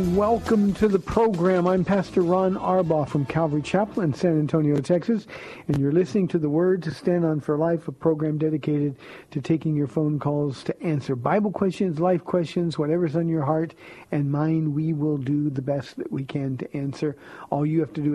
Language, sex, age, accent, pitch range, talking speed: English, male, 50-69, American, 145-175 Hz, 200 wpm